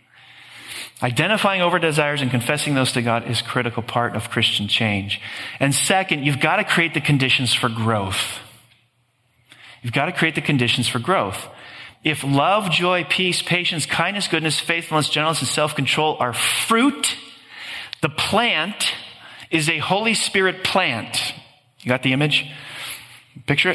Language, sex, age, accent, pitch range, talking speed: English, male, 40-59, American, 125-165 Hz, 145 wpm